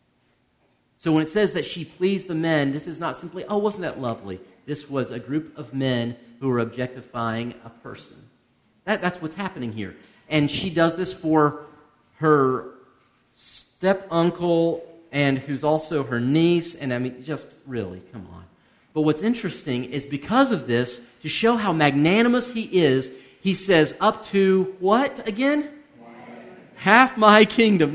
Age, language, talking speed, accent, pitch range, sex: 40-59, English, 155 wpm, American, 130-190 Hz, male